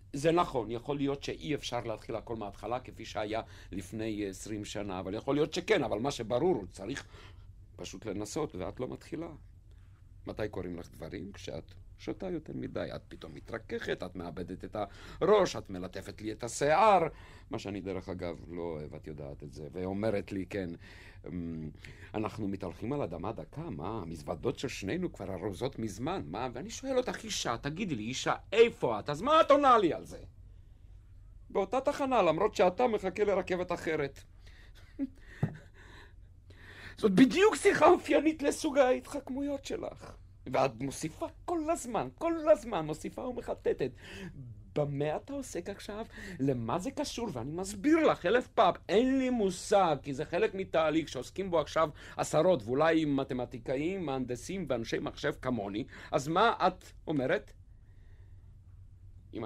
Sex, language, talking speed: male, Hebrew, 145 wpm